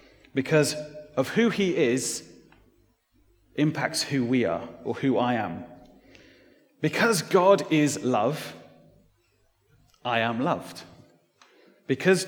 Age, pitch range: 30-49, 130-170 Hz